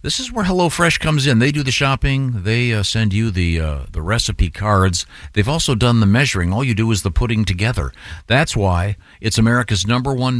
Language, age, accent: English, 50-69, American